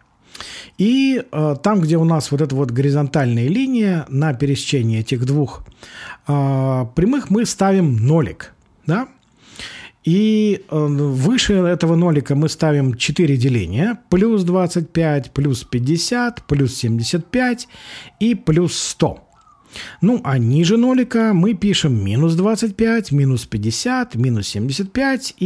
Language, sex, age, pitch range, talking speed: Russian, male, 40-59, 140-200 Hz, 120 wpm